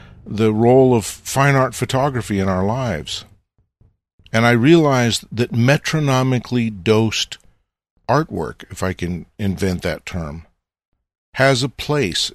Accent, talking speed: American, 120 wpm